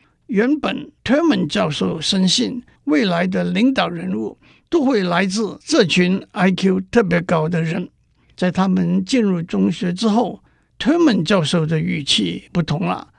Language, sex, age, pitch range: Chinese, male, 60-79, 170-230 Hz